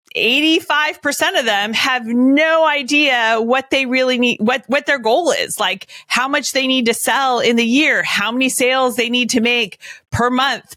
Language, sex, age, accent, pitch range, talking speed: English, female, 30-49, American, 210-270 Hz, 185 wpm